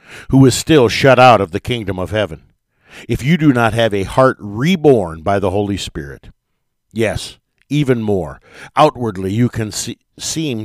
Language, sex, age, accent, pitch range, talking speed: English, male, 50-69, American, 100-130 Hz, 165 wpm